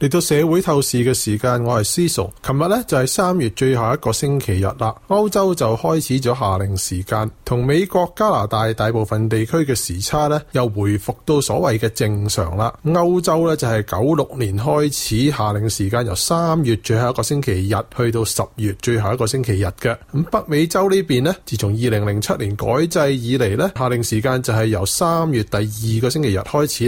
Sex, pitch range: male, 110-150 Hz